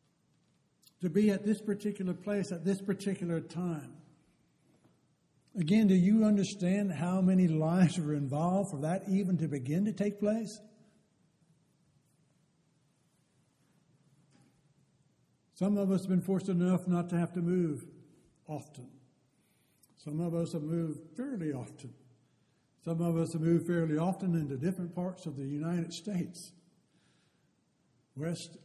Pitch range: 150-180 Hz